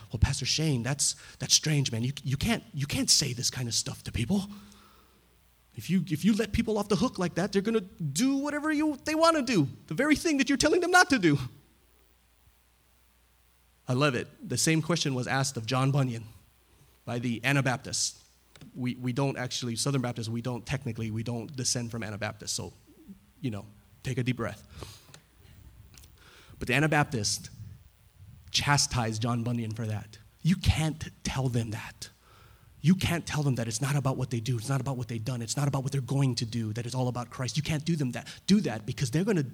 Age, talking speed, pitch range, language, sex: 30-49, 210 wpm, 110-145 Hz, English, male